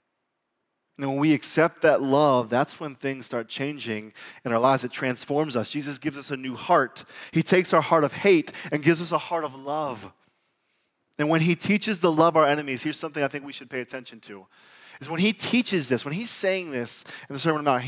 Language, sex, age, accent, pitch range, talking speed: English, male, 20-39, American, 135-195 Hz, 230 wpm